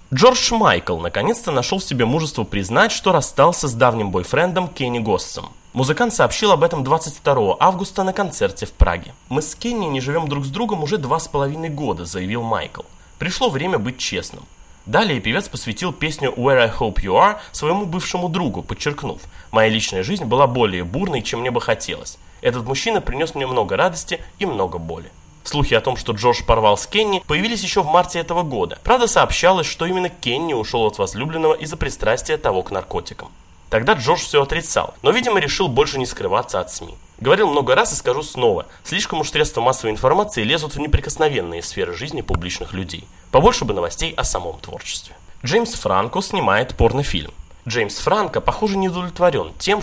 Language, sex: Russian, male